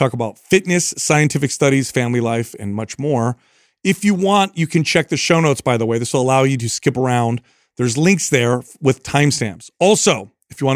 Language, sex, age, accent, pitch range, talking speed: English, male, 40-59, American, 130-170 Hz, 210 wpm